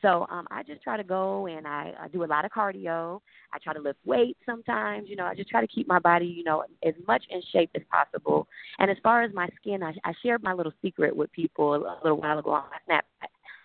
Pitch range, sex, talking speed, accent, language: 150-195 Hz, female, 260 wpm, American, English